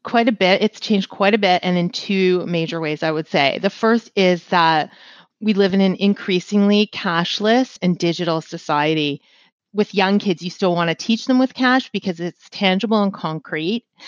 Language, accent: English, American